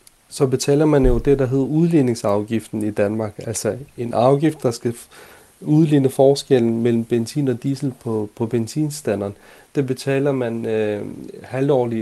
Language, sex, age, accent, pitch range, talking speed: Danish, male, 30-49, native, 115-145 Hz, 145 wpm